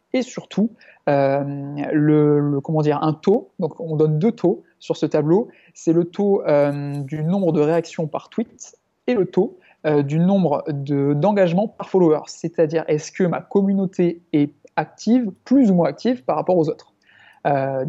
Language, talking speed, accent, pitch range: French, 180 wpm, French, 150-175 Hz